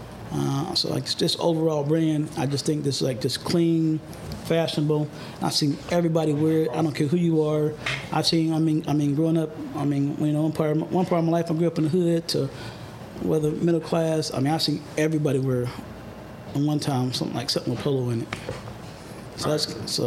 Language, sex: English, male